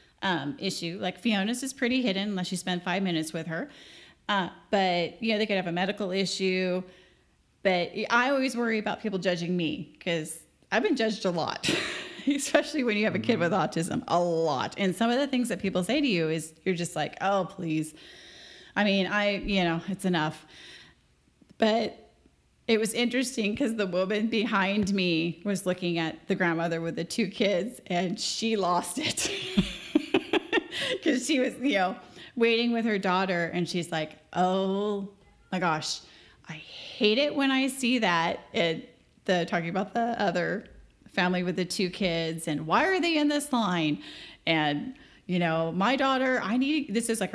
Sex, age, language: female, 30-49, English